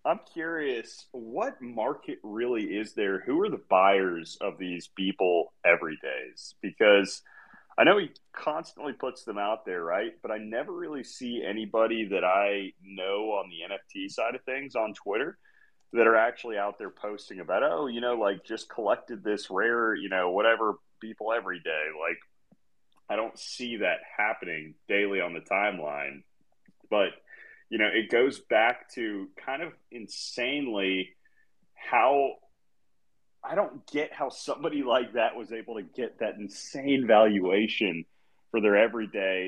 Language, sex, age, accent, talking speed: English, male, 30-49, American, 155 wpm